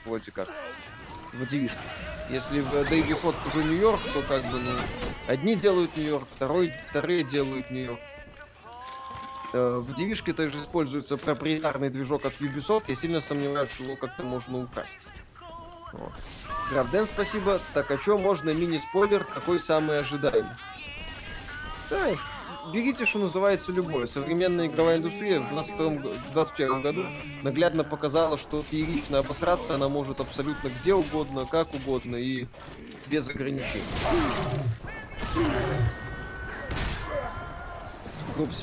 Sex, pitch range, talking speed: male, 135-175 Hz, 120 wpm